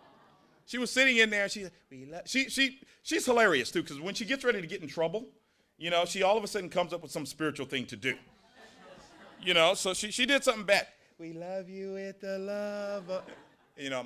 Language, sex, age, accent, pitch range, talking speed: English, male, 40-59, American, 130-210 Hz, 225 wpm